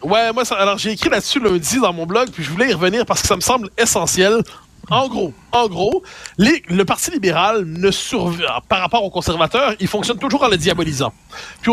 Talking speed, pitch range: 220 wpm, 185-235 Hz